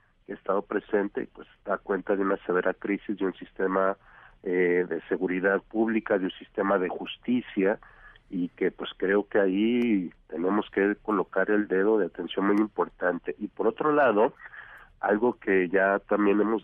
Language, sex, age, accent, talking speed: Spanish, male, 50-69, Mexican, 165 wpm